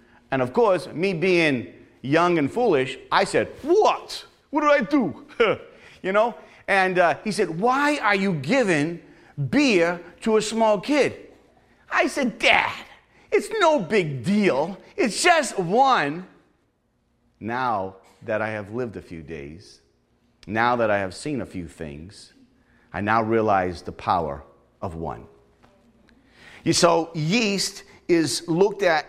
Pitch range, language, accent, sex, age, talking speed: 115-185 Hz, English, American, male, 40-59, 140 wpm